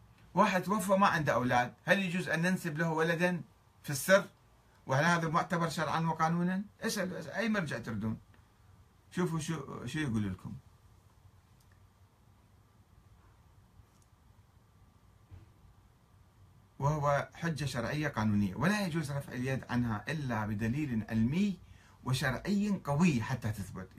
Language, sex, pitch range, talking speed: Arabic, male, 105-165 Hz, 110 wpm